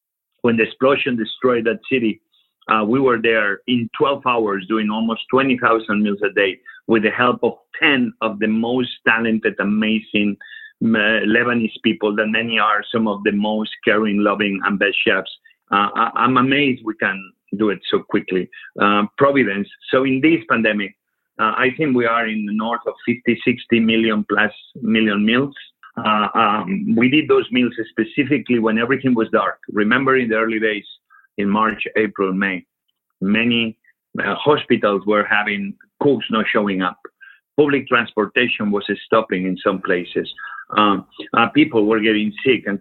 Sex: male